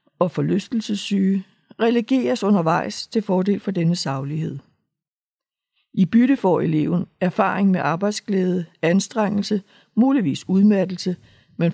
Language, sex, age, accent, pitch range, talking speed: Danish, female, 60-79, native, 175-210 Hz, 100 wpm